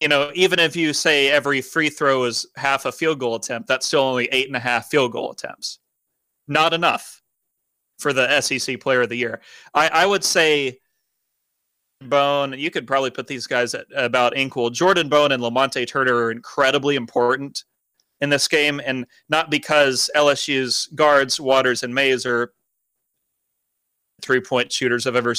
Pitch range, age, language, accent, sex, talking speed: 125-145 Hz, 30-49, English, American, male, 170 wpm